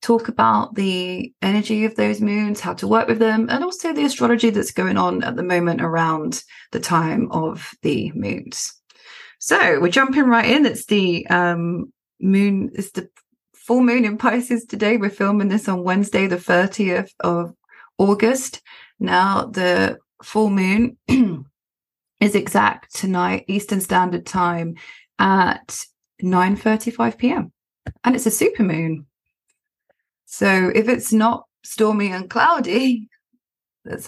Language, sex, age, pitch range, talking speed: English, female, 20-39, 175-230 Hz, 135 wpm